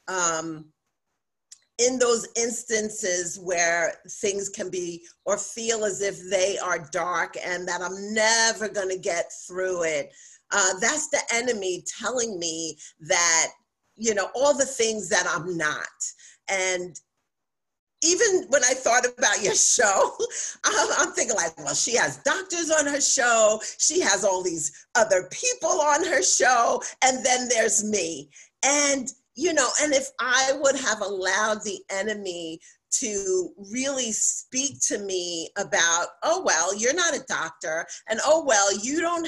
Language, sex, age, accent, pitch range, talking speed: English, female, 40-59, American, 185-270 Hz, 150 wpm